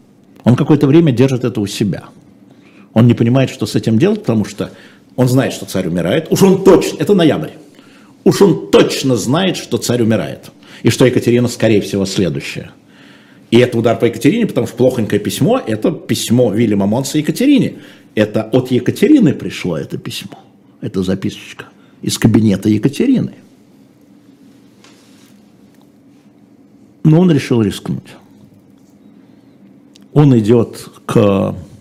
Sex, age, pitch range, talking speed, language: male, 50-69, 110-145 Hz, 135 wpm, Russian